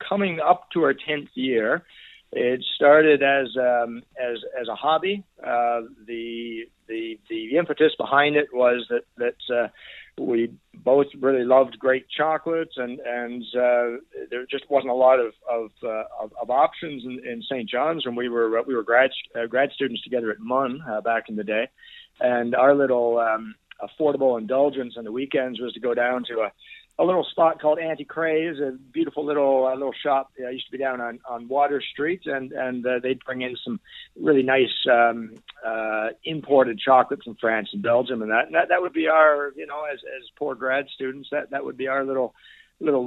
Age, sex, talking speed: 50-69, male, 200 wpm